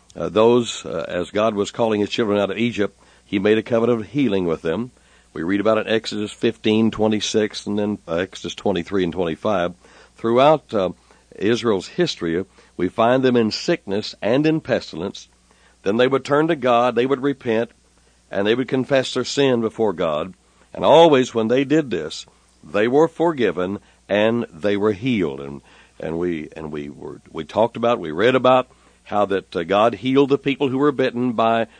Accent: American